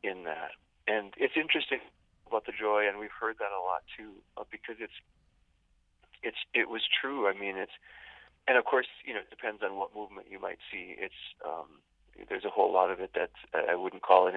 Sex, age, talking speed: male, 30-49, 210 wpm